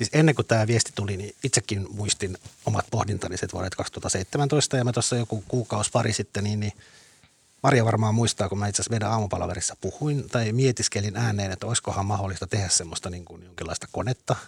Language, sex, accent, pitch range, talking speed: Finnish, male, native, 90-115 Hz, 165 wpm